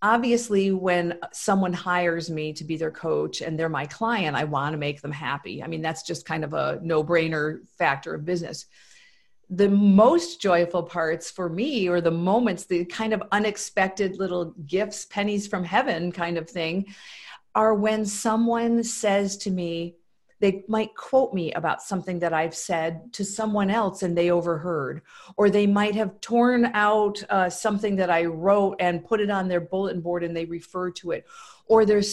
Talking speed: 185 wpm